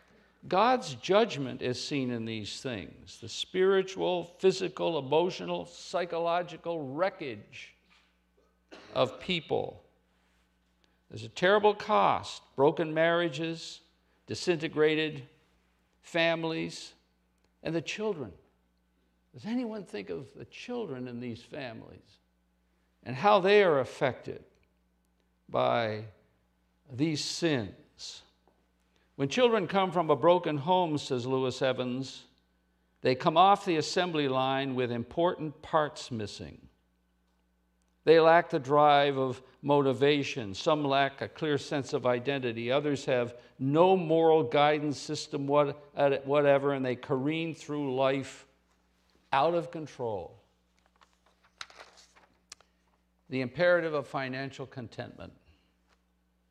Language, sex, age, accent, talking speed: English, male, 60-79, American, 100 wpm